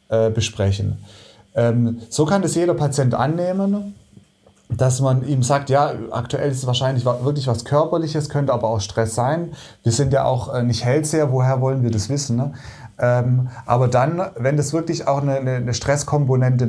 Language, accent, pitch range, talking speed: German, German, 120-145 Hz, 155 wpm